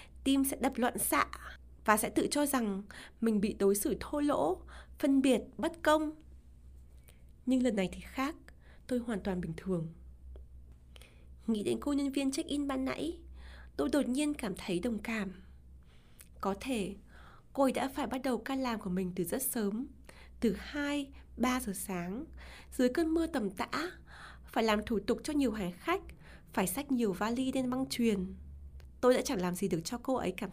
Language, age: Vietnamese, 20-39